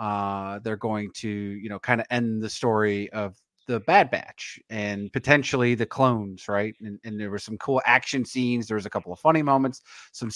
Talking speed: 210 wpm